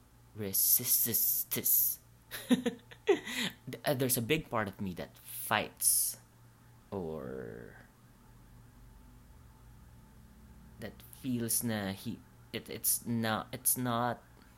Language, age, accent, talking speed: English, 20-39, Filipino, 75 wpm